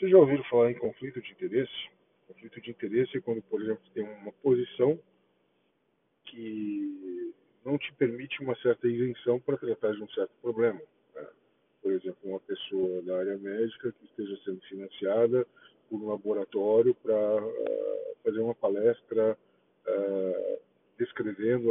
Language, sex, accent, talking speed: Portuguese, male, Brazilian, 145 wpm